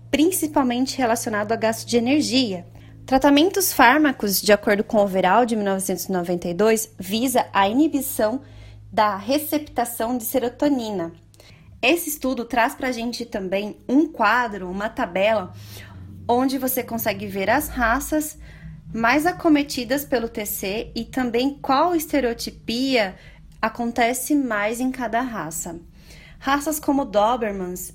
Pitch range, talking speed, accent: 205-255 Hz, 115 wpm, Brazilian